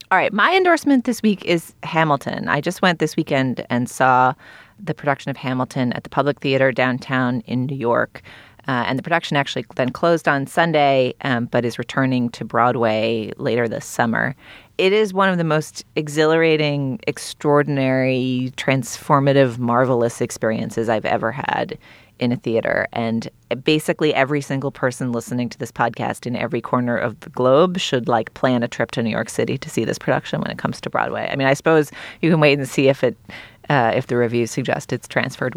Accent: American